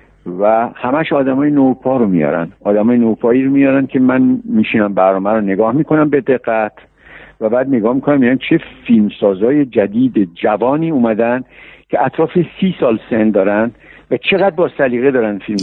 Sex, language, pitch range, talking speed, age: male, Persian, 110-155 Hz, 160 wpm, 60-79